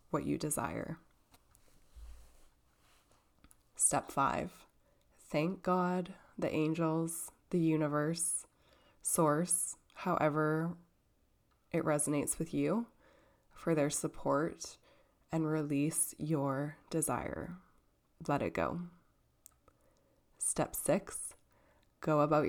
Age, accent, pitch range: 20-39, American, 145-165 Hz